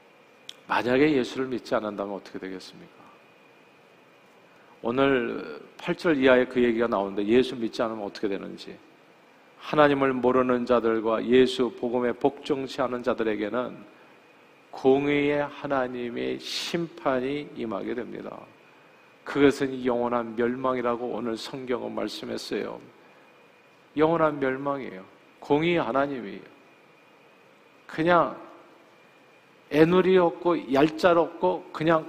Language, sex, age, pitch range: Korean, male, 40-59, 125-185 Hz